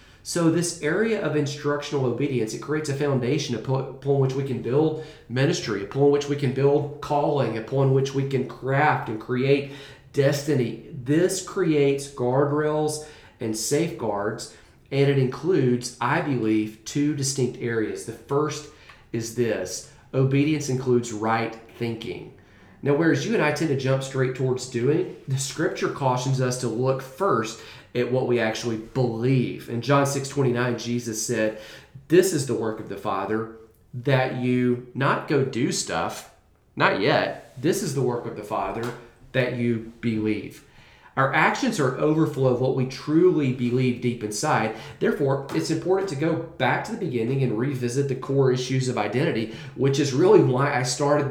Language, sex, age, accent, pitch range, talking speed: English, male, 40-59, American, 120-145 Hz, 165 wpm